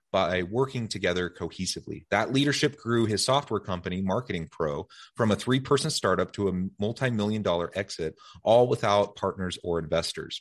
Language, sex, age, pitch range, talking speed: English, male, 30-49, 90-120 Hz, 150 wpm